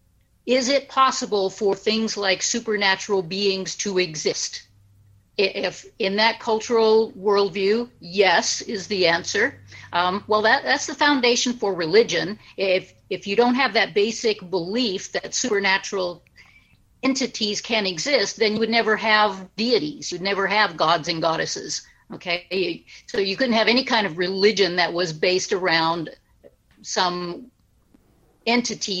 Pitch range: 180-225 Hz